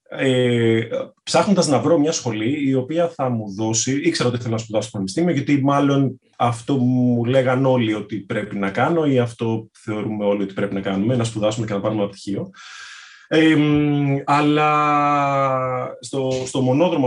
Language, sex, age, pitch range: Greek, male, 20-39, 100-135 Hz